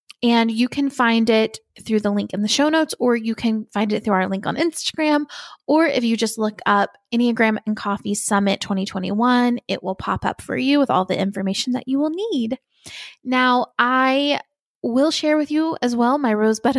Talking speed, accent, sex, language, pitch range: 205 wpm, American, female, English, 220-280 Hz